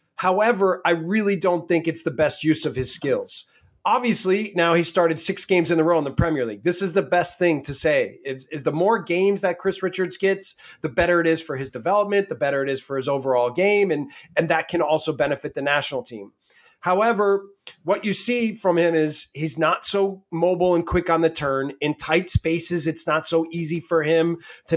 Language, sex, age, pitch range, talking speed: English, male, 30-49, 155-190 Hz, 220 wpm